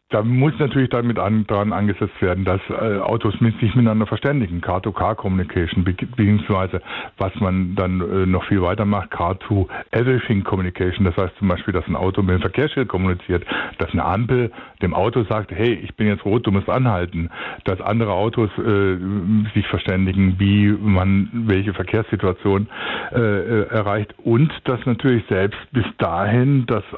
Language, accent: German, German